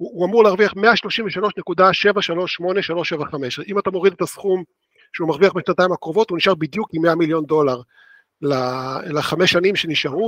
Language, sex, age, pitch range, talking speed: Hebrew, male, 50-69, 150-195 Hz, 145 wpm